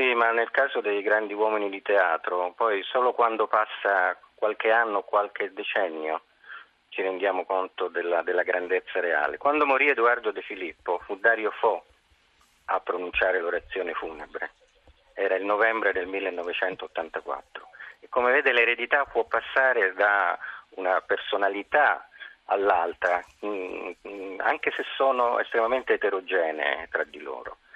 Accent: native